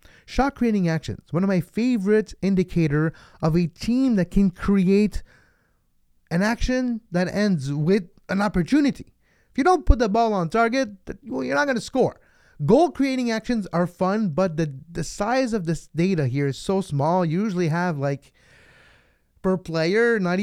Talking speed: 165 wpm